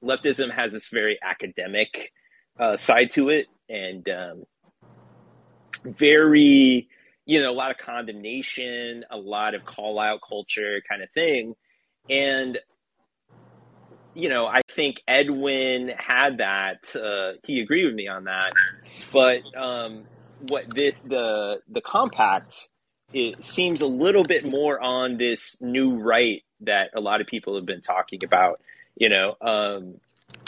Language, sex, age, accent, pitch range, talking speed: English, male, 30-49, American, 110-145 Hz, 140 wpm